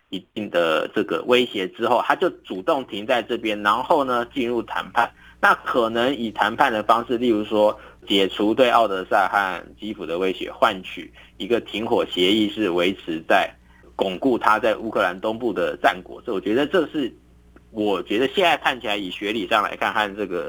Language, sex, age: Chinese, male, 50-69